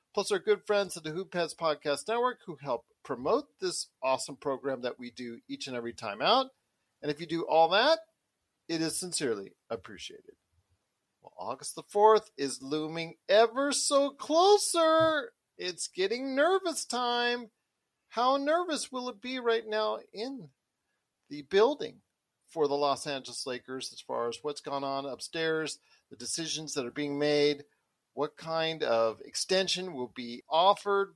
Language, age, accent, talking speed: English, 40-59, American, 160 wpm